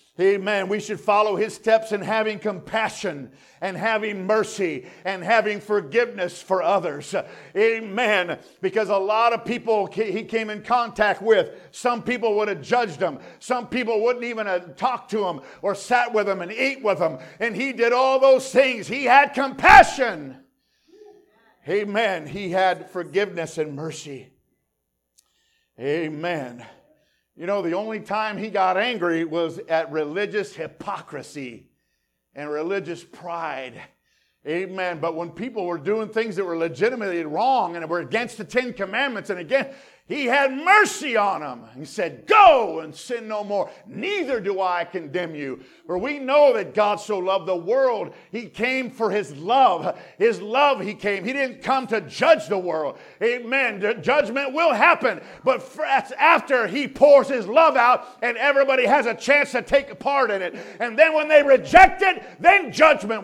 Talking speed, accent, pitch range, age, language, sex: 165 wpm, American, 190-265 Hz, 50-69, English, male